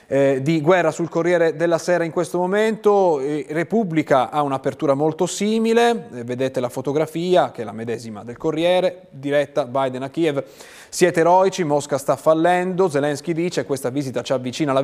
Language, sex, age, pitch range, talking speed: Italian, male, 30-49, 125-175 Hz, 165 wpm